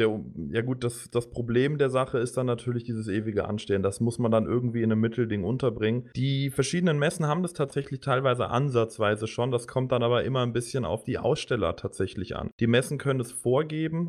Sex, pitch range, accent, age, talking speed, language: male, 110-130 Hz, German, 20-39, 205 wpm, German